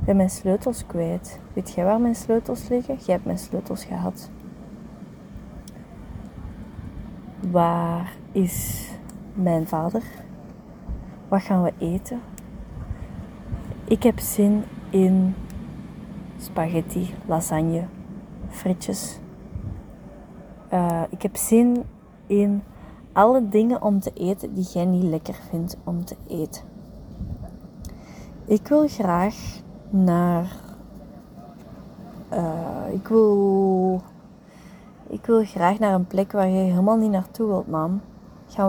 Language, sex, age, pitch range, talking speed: Dutch, female, 20-39, 190-215 Hz, 110 wpm